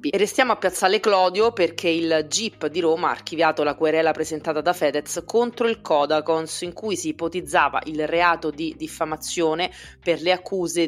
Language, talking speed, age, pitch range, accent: Italian, 170 wpm, 30-49, 145-180 Hz, native